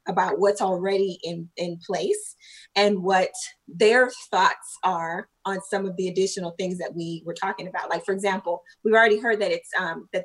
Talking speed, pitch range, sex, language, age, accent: 185 wpm, 180-225 Hz, female, English, 20-39, American